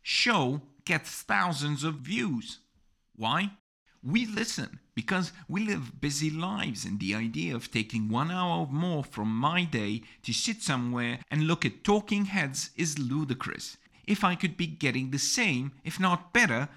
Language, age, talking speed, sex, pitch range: English, 50-69, 160 wpm, male, 120-170 Hz